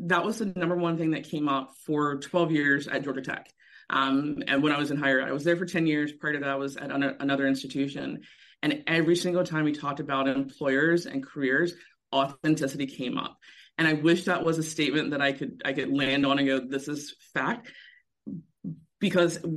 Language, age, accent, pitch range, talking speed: English, 30-49, American, 145-175 Hz, 215 wpm